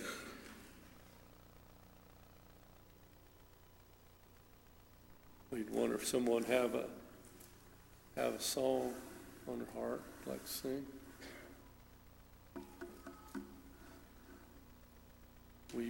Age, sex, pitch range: 50-69, male, 90-125 Hz